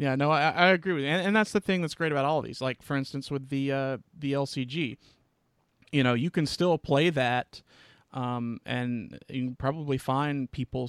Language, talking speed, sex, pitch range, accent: English, 220 wpm, male, 125-150 Hz, American